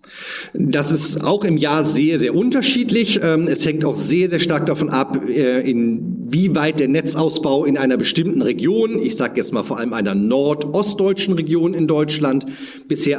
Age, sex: 40-59, male